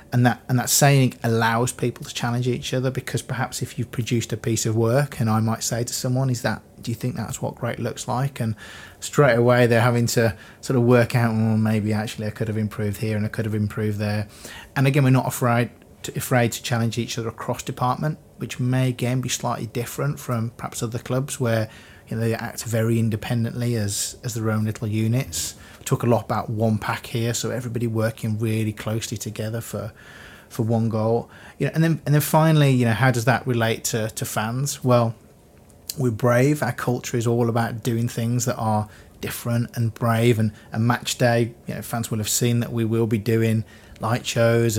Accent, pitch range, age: British, 110-125 Hz, 30-49